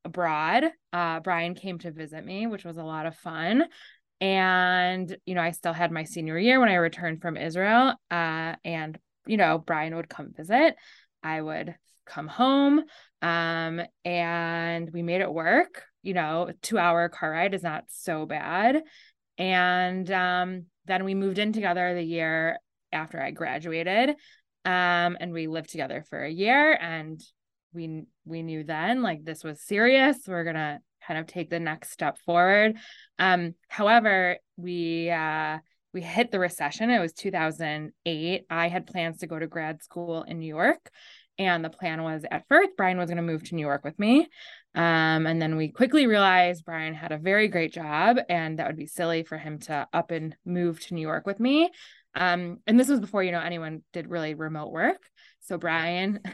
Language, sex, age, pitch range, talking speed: English, female, 20-39, 160-200 Hz, 185 wpm